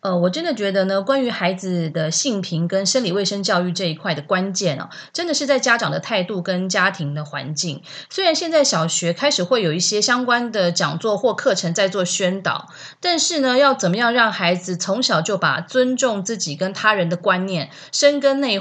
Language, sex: Chinese, female